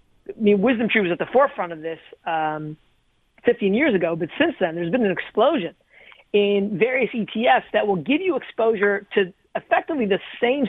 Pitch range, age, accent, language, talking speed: 185-230 Hz, 40-59, American, English, 185 wpm